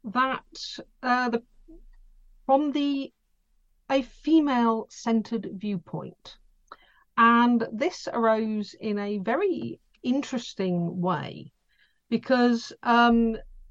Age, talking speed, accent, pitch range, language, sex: 50-69, 85 wpm, British, 175-260 Hz, English, female